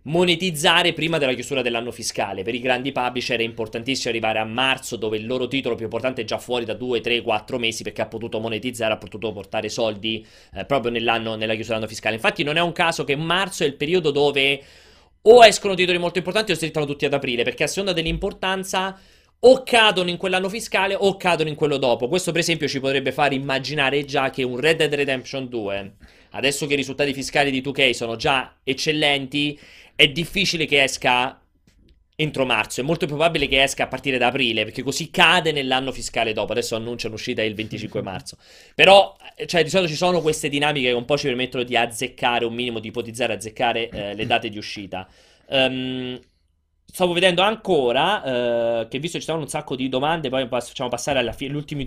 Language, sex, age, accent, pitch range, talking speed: Italian, male, 30-49, native, 115-160 Hz, 205 wpm